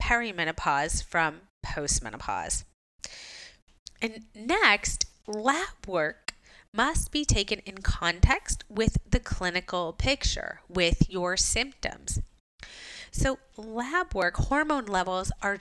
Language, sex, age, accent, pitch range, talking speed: English, female, 30-49, American, 185-260 Hz, 95 wpm